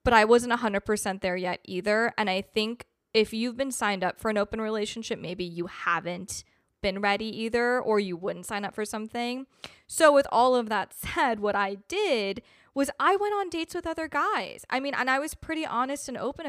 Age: 20-39